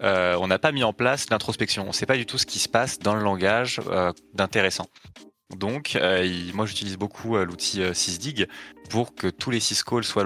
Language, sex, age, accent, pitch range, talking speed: French, male, 20-39, French, 90-110 Hz, 220 wpm